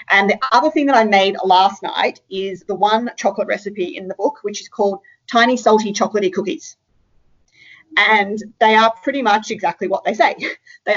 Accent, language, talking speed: Australian, English, 185 wpm